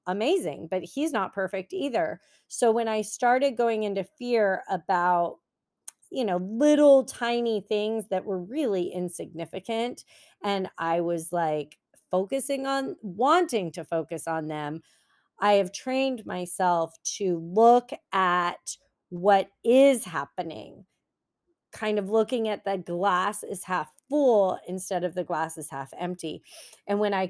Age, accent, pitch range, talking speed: 30-49, American, 170-220 Hz, 140 wpm